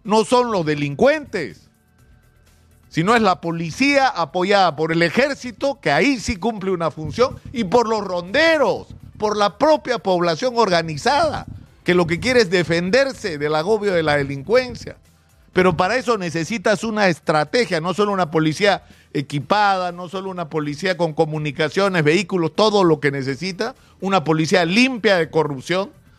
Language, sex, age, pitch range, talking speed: Spanish, male, 50-69, 160-230 Hz, 150 wpm